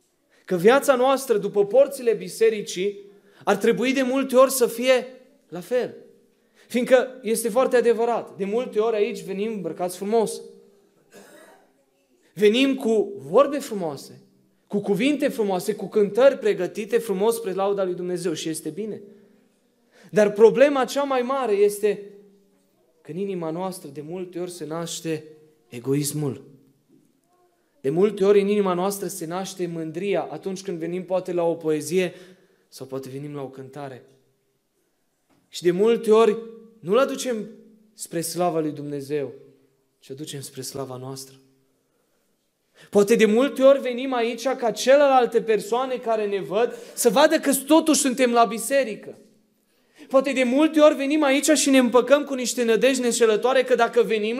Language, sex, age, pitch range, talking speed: Romanian, male, 20-39, 180-245 Hz, 145 wpm